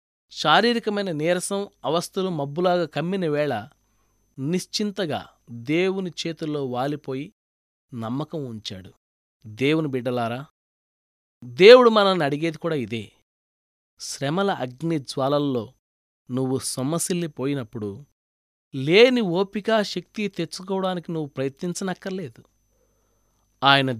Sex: male